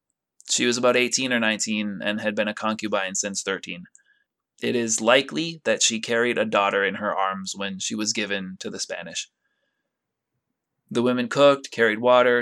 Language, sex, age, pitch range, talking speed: English, male, 20-39, 105-125 Hz, 175 wpm